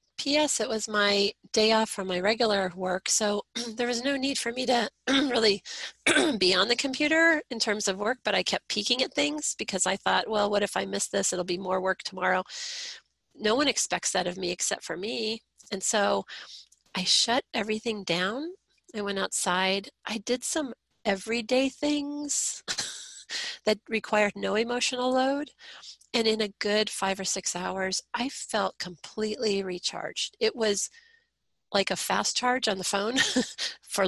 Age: 40-59